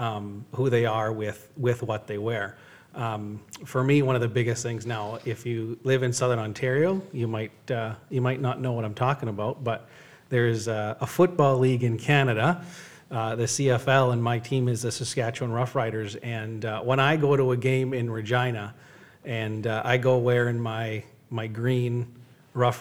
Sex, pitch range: male, 115-135 Hz